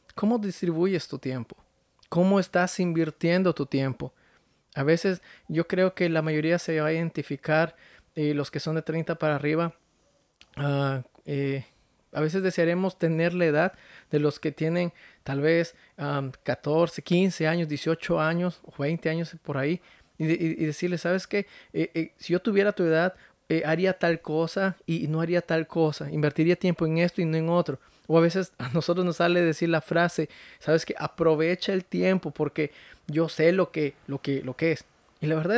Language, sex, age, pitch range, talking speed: Spanish, male, 30-49, 155-180 Hz, 185 wpm